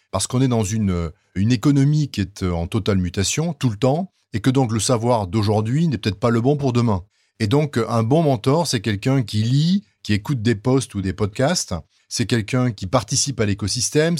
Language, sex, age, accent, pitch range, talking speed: French, male, 30-49, French, 100-130 Hz, 210 wpm